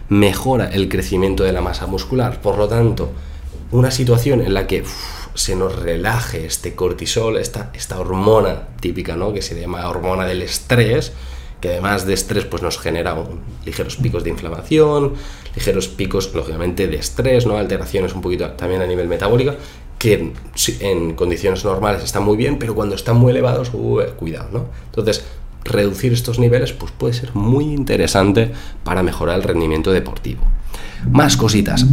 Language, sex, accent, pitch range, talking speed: Spanish, male, Spanish, 85-120 Hz, 165 wpm